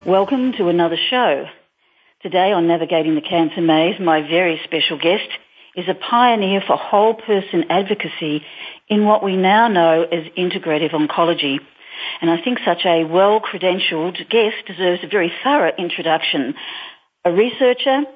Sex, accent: female, Australian